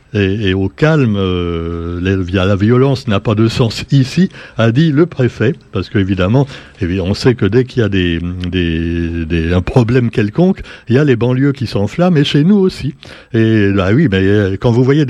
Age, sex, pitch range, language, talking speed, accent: 60-79, male, 105-140 Hz, French, 185 wpm, French